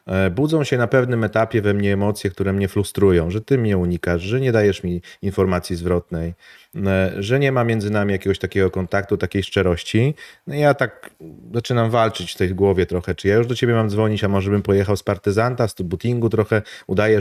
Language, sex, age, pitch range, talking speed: Polish, male, 30-49, 100-125 Hz, 195 wpm